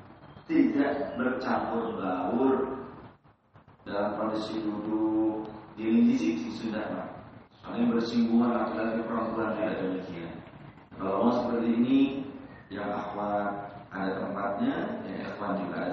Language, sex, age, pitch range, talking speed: Indonesian, male, 40-59, 110-135 Hz, 95 wpm